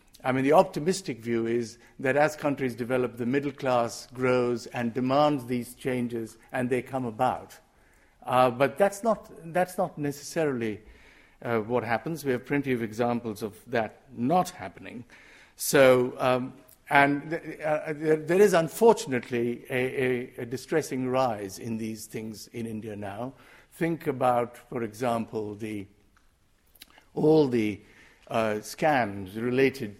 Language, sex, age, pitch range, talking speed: English, male, 50-69, 110-135 Hz, 140 wpm